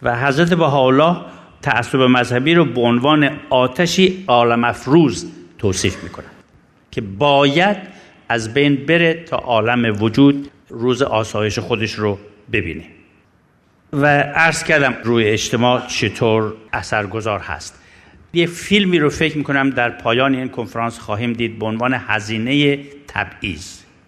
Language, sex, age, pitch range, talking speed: Persian, male, 60-79, 115-155 Hz, 120 wpm